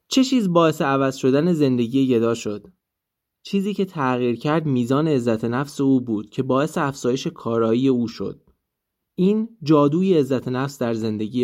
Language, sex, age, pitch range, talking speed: Persian, male, 20-39, 120-170 Hz, 150 wpm